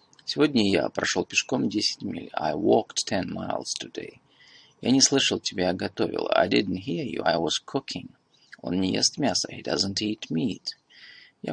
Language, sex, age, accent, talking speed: Russian, male, 30-49, native, 170 wpm